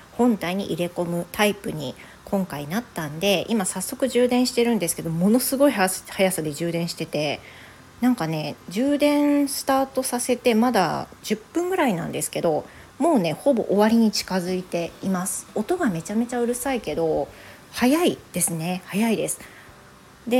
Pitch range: 170-235 Hz